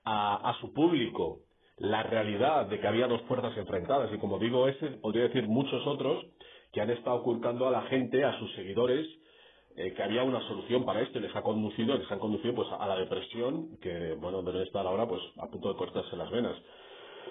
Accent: Spanish